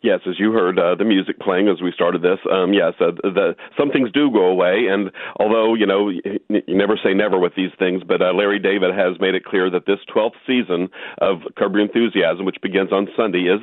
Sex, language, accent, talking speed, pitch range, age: male, English, American, 225 wpm, 95-105 Hz, 50-69